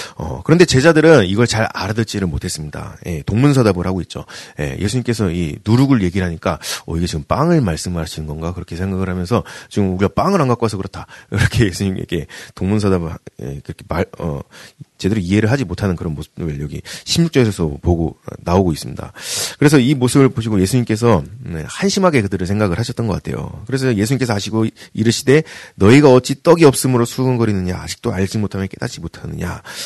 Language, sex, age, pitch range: Korean, male, 30-49, 85-120 Hz